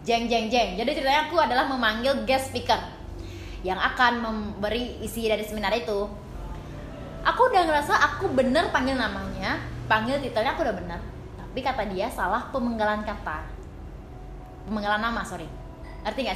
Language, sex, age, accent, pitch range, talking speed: Indonesian, female, 20-39, native, 210-285 Hz, 145 wpm